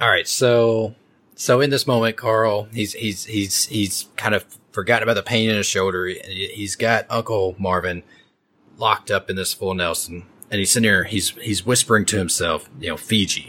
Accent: American